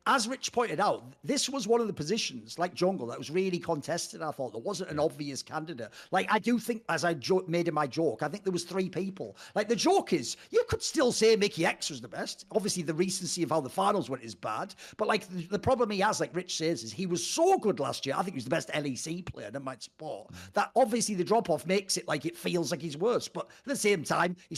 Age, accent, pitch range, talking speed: 50-69, British, 150-220 Hz, 265 wpm